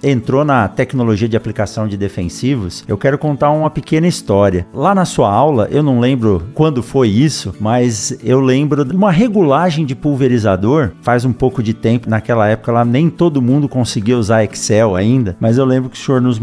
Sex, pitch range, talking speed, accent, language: male, 110-145 Hz, 195 wpm, Brazilian, Portuguese